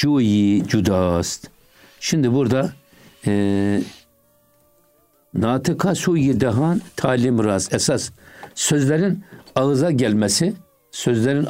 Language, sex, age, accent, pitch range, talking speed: Turkish, male, 60-79, native, 110-145 Hz, 70 wpm